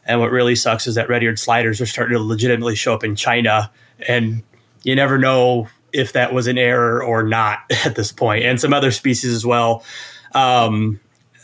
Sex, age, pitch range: male, 20-39, 115-125 Hz